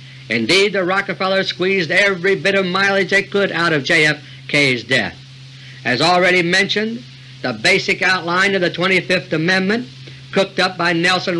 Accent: American